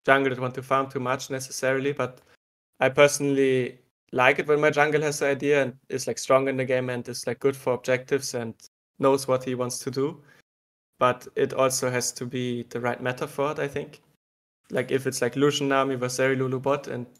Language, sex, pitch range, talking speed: English, male, 125-140 Hz, 215 wpm